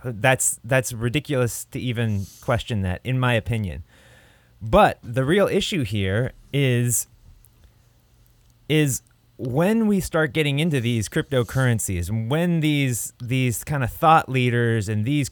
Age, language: 20-39, English